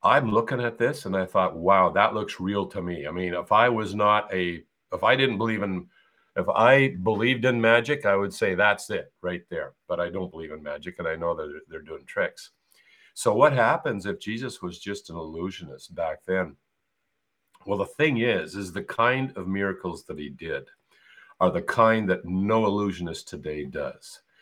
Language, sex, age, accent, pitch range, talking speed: English, male, 50-69, American, 90-120 Hz, 200 wpm